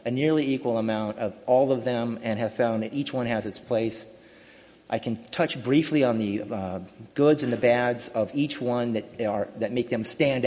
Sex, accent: male, American